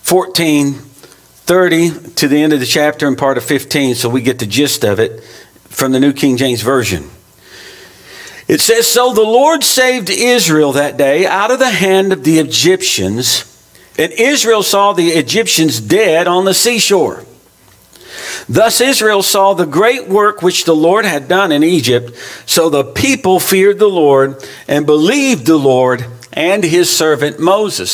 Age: 50-69